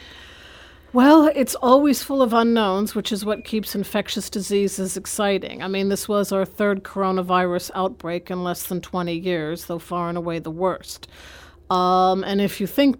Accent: American